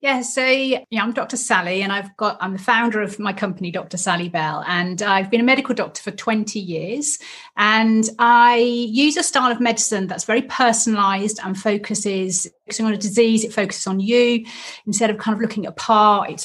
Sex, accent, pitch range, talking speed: female, British, 190-235 Hz, 195 wpm